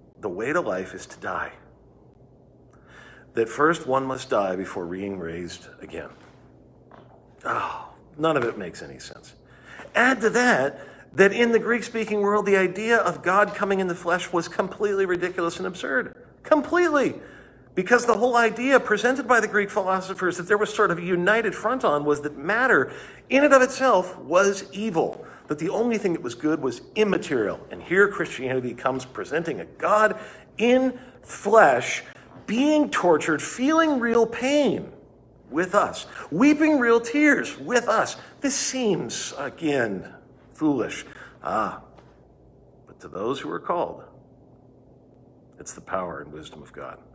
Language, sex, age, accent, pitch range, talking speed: English, male, 50-69, American, 170-245 Hz, 155 wpm